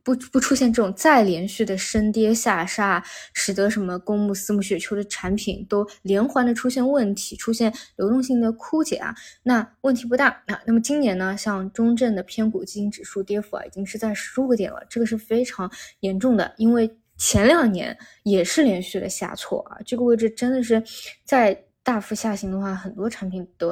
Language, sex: Chinese, female